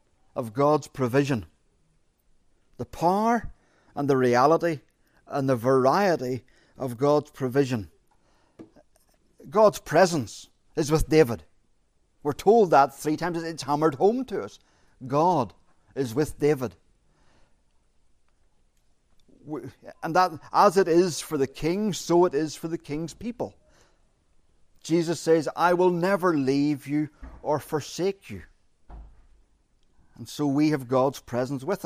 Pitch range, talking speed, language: 105-155 Hz, 120 wpm, English